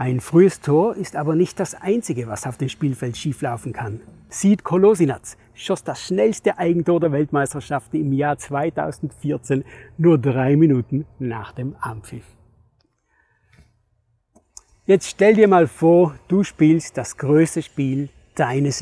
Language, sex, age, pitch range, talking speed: German, male, 60-79, 130-175 Hz, 135 wpm